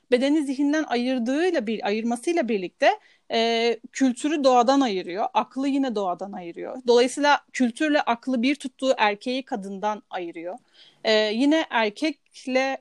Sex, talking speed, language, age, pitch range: female, 115 wpm, Turkish, 40-59, 225-275 Hz